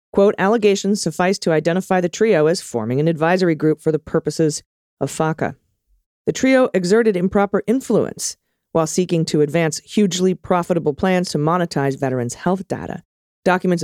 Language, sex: English, female